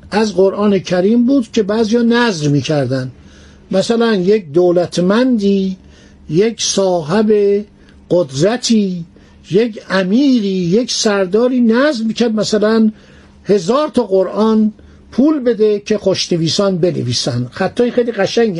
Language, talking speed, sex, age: Persian, 110 wpm, male, 50-69